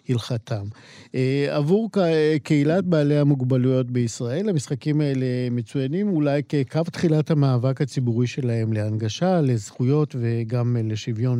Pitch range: 120-150 Hz